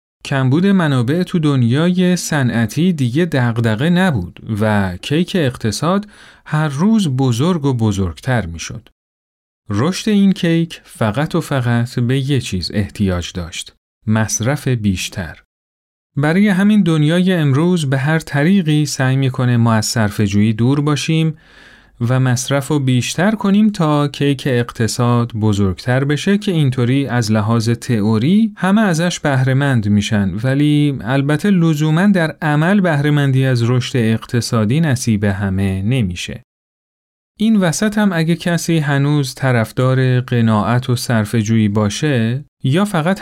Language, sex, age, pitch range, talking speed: Persian, male, 40-59, 115-160 Hz, 120 wpm